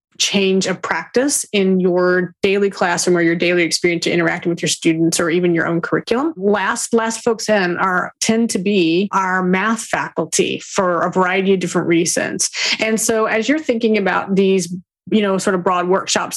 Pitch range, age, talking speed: 175-205 Hz, 30-49, 185 wpm